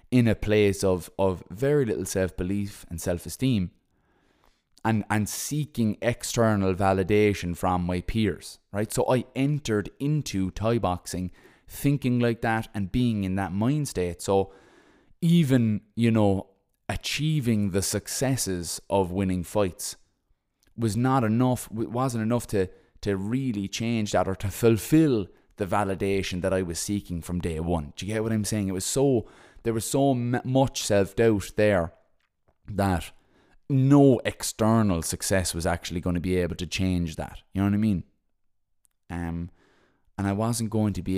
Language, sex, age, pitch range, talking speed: English, male, 20-39, 90-115 Hz, 160 wpm